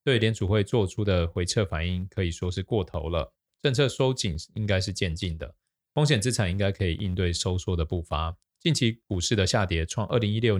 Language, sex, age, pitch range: Chinese, male, 20-39, 85-115 Hz